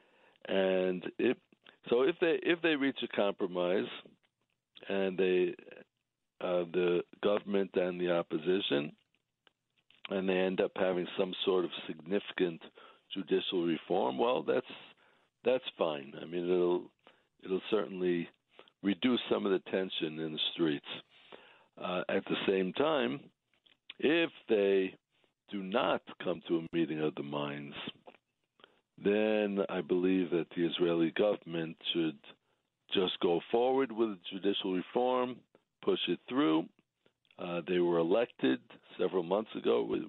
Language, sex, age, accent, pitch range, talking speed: English, male, 60-79, American, 85-105 Hz, 130 wpm